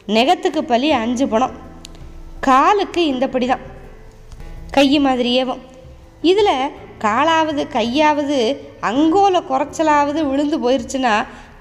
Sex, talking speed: female, 85 wpm